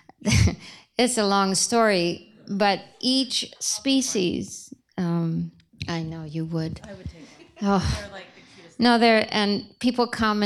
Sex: female